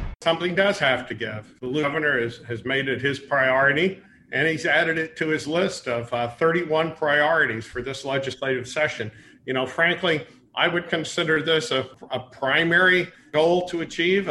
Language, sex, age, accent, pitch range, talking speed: English, male, 50-69, American, 130-175 Hz, 170 wpm